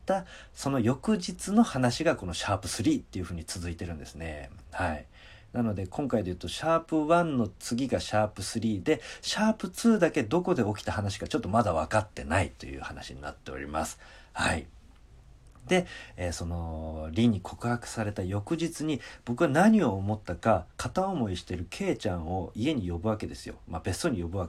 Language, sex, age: Japanese, male, 40-59